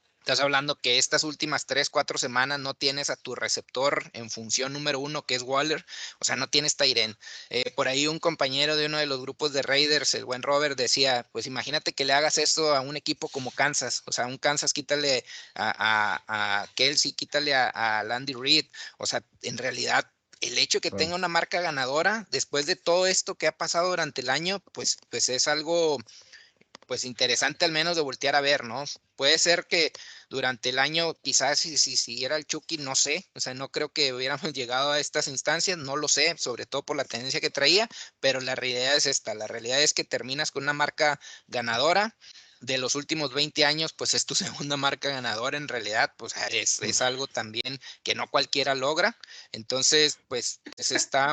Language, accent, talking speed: Spanish, Mexican, 205 wpm